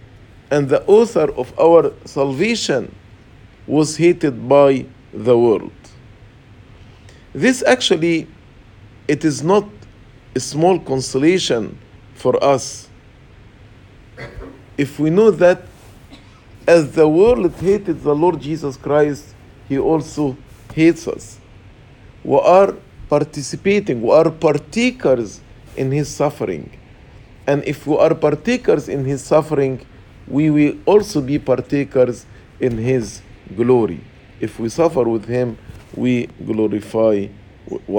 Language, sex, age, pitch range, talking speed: English, male, 50-69, 105-155 Hz, 110 wpm